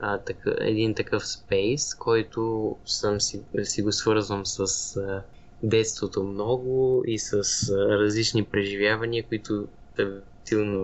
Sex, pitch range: male, 105-130 Hz